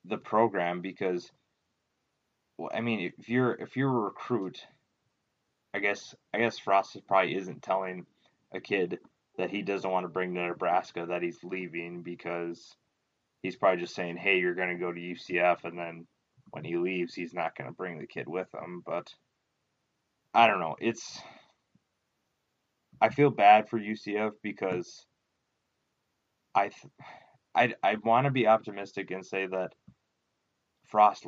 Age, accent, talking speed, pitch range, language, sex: 20-39, American, 155 wpm, 90-100 Hz, English, male